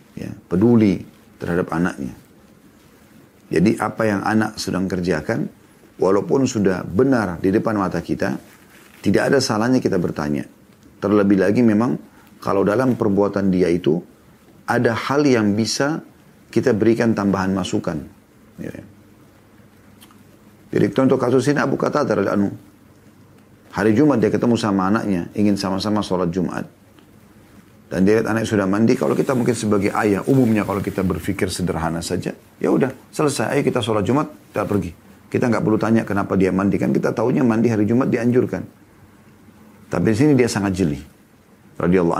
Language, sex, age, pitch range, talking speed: Indonesian, male, 30-49, 100-115 Hz, 145 wpm